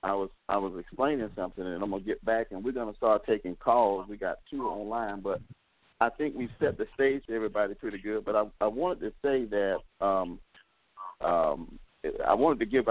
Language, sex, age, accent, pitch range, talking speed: English, male, 50-69, American, 105-145 Hz, 210 wpm